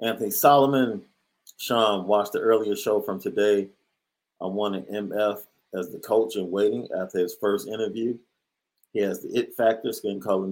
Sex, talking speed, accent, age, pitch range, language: male, 165 wpm, American, 40-59, 95-110 Hz, English